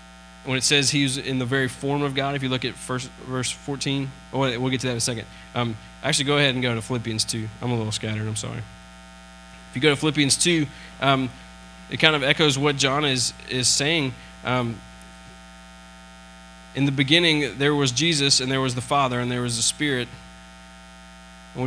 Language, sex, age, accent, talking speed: English, male, 20-39, American, 200 wpm